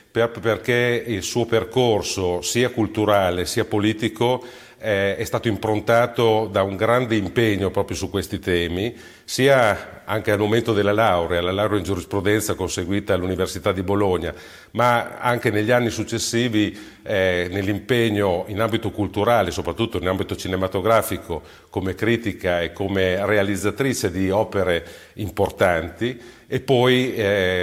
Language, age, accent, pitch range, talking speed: Italian, 40-59, native, 95-115 Hz, 125 wpm